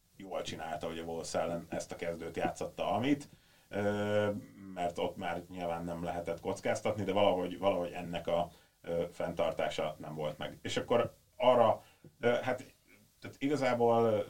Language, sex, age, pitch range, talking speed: Hungarian, male, 30-49, 85-90 Hz, 135 wpm